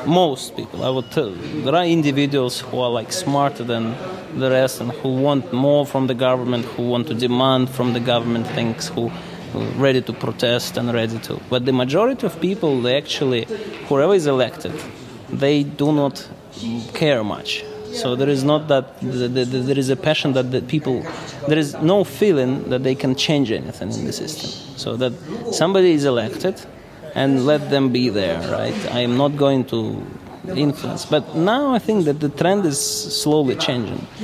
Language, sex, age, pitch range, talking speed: English, male, 20-39, 125-155 Hz, 180 wpm